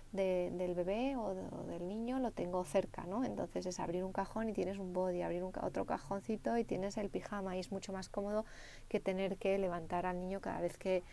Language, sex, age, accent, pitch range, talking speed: Spanish, female, 30-49, Spanish, 180-215 Hz, 235 wpm